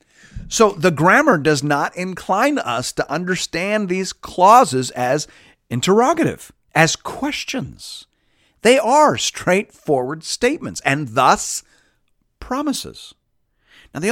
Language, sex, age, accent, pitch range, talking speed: English, male, 40-59, American, 135-215 Hz, 100 wpm